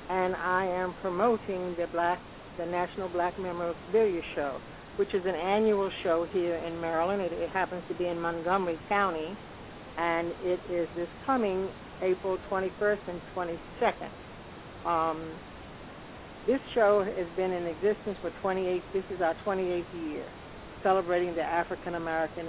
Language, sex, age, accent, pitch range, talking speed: English, female, 60-79, American, 165-190 Hz, 145 wpm